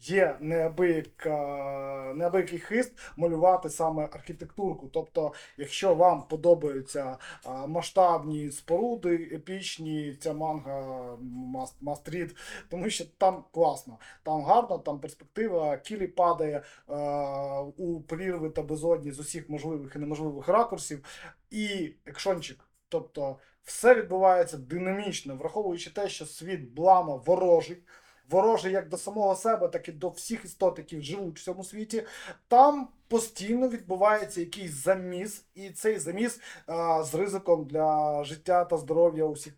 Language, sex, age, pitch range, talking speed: Ukrainian, male, 20-39, 150-185 Hz, 125 wpm